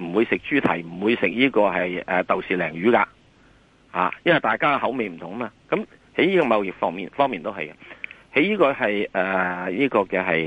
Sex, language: male, Chinese